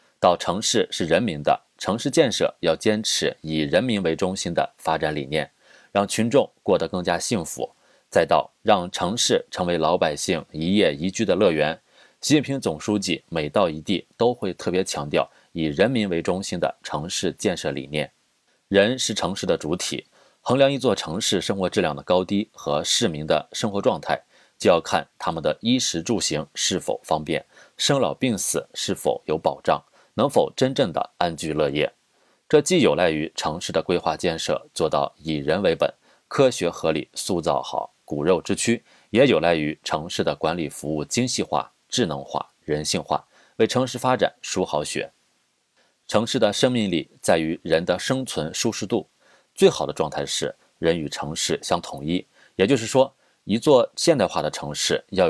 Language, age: Chinese, 30-49